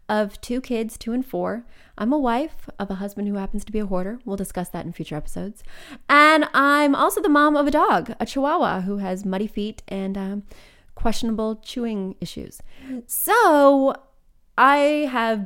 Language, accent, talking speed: English, American, 180 wpm